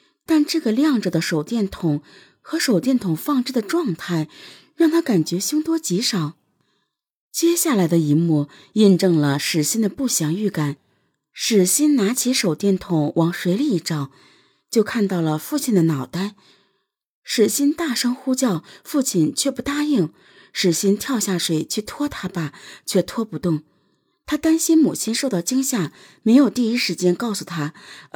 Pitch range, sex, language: 160-235 Hz, female, Chinese